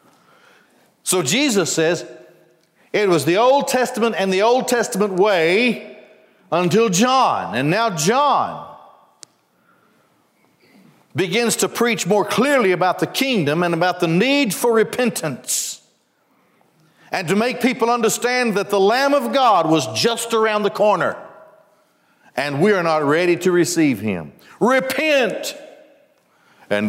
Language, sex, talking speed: English, male, 125 wpm